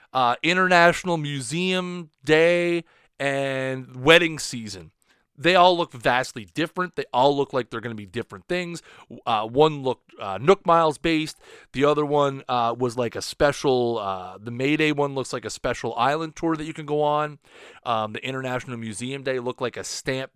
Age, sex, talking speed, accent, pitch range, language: 30-49, male, 185 wpm, American, 125-170 Hz, English